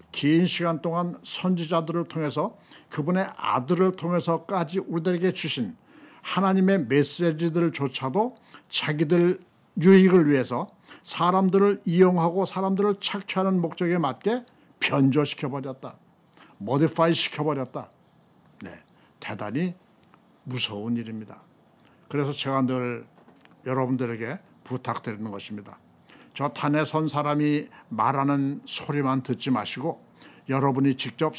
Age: 60-79